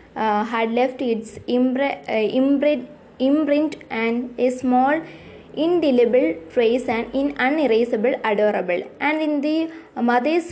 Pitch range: 225-265 Hz